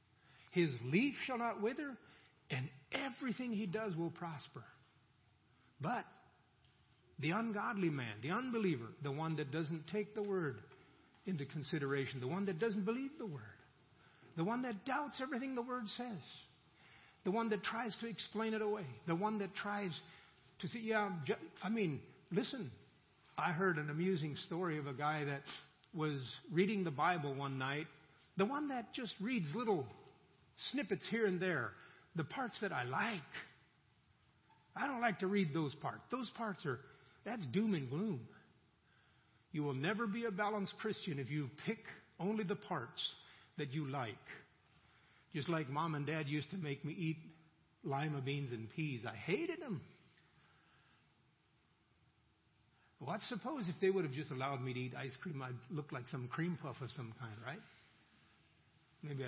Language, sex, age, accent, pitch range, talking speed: English, male, 50-69, American, 140-210 Hz, 165 wpm